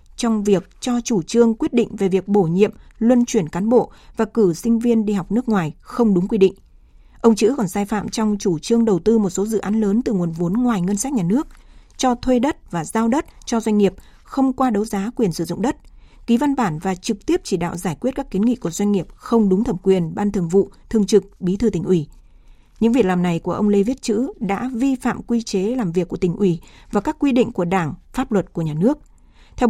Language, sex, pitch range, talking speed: Vietnamese, female, 190-235 Hz, 255 wpm